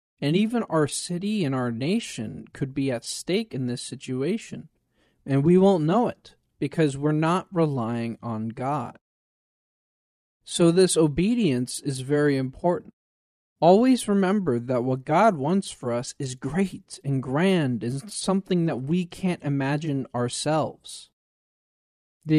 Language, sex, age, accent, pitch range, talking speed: English, male, 40-59, American, 135-190 Hz, 135 wpm